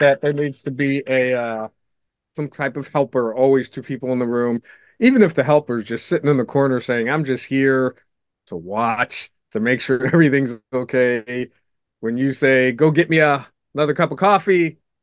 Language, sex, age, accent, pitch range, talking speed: English, male, 30-49, American, 130-160 Hz, 195 wpm